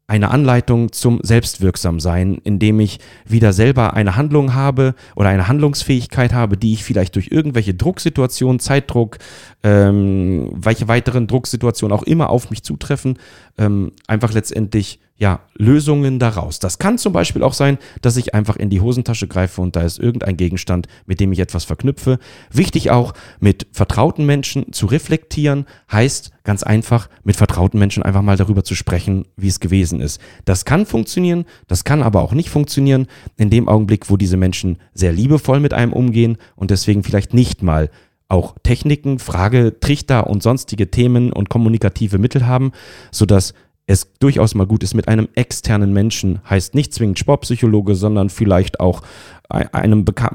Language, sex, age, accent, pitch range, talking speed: German, male, 30-49, German, 95-125 Hz, 160 wpm